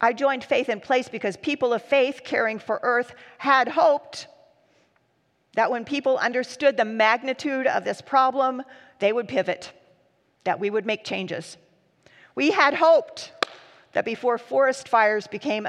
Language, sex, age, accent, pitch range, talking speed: English, female, 40-59, American, 195-270 Hz, 150 wpm